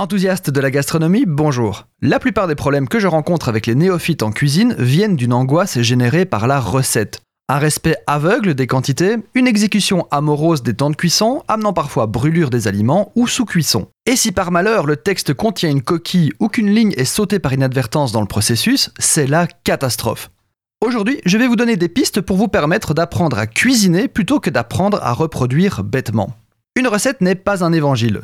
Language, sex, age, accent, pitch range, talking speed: French, male, 30-49, French, 135-205 Hz, 195 wpm